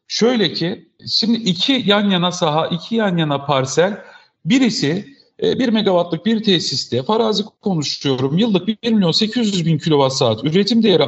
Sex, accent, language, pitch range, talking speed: male, native, Turkish, 150-210 Hz, 155 wpm